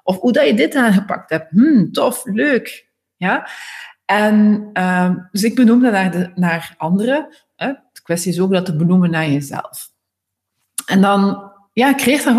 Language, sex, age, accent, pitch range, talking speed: Dutch, female, 40-59, Dutch, 170-230 Hz, 170 wpm